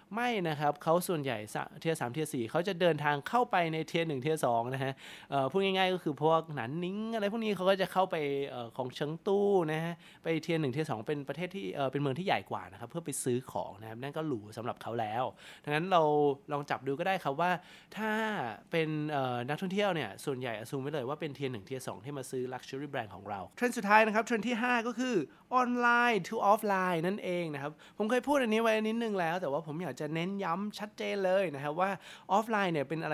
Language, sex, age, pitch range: Thai, male, 20-39, 140-195 Hz